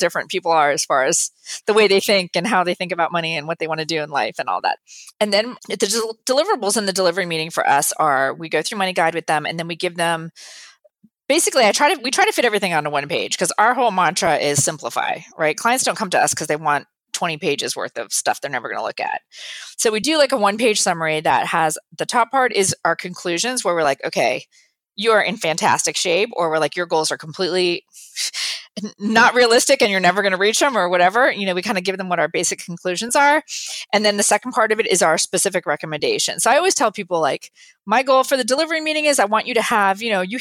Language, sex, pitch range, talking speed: English, female, 175-235 Hz, 255 wpm